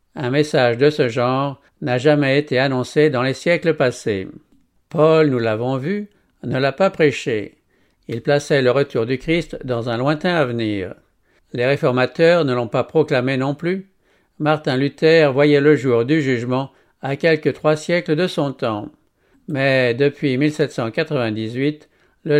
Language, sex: English, male